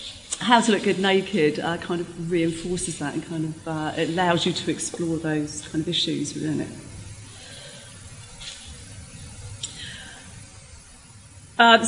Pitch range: 165-215 Hz